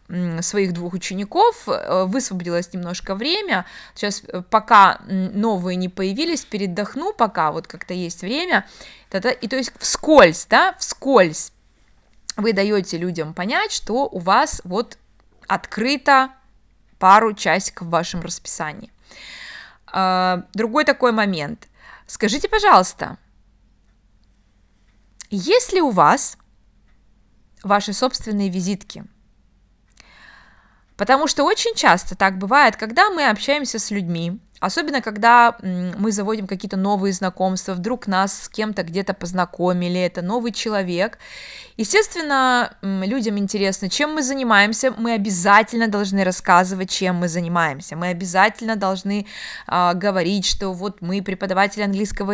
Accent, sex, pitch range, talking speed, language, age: native, female, 180-230 Hz, 110 wpm, Russian, 20-39